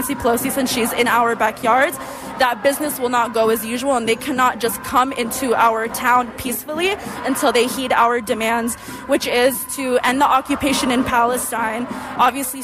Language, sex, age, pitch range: English, female, 20-39, 240-275 Hz